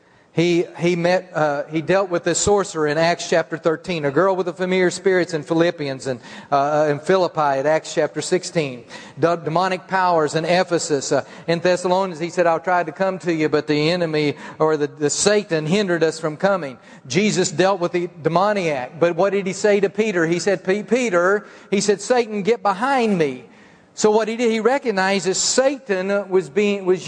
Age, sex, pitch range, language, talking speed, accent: 40-59, male, 170-215 Hz, English, 195 wpm, American